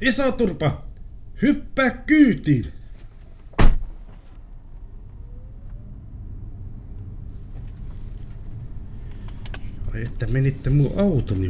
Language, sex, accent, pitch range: Finnish, male, native, 100-130 Hz